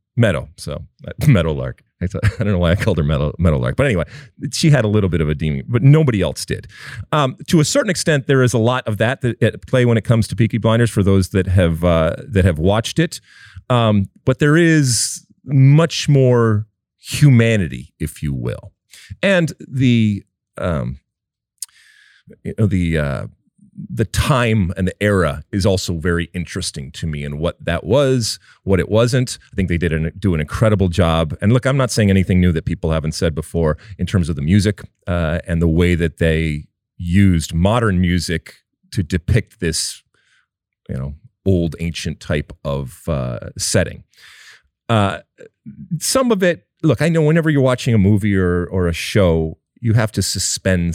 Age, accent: 40-59, American